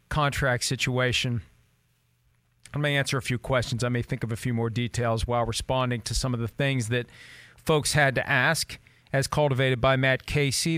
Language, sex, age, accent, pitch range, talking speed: English, male, 40-59, American, 125-145 Hz, 185 wpm